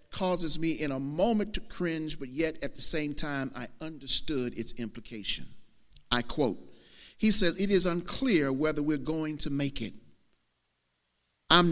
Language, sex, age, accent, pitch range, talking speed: English, male, 50-69, American, 120-175 Hz, 160 wpm